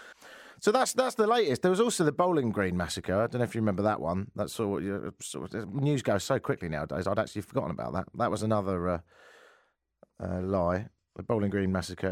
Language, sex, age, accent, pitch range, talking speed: English, male, 40-59, British, 90-120 Hz, 230 wpm